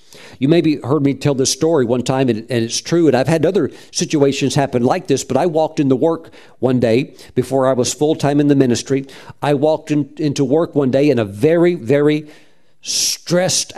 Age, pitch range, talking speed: 50-69, 125-160 Hz, 210 wpm